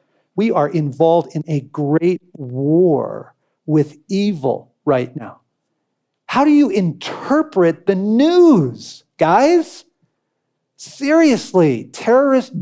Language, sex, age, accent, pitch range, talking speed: English, male, 50-69, American, 150-245 Hz, 95 wpm